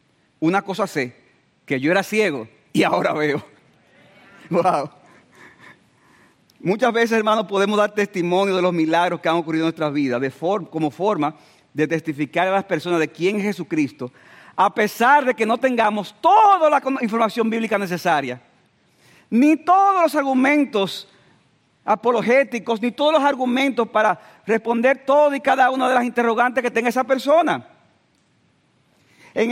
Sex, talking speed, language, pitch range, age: male, 145 wpm, Spanish, 155-240 Hz, 50-69